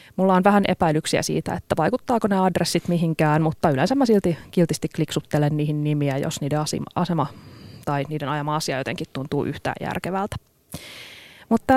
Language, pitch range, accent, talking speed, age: Finnish, 155-215 Hz, native, 160 wpm, 30-49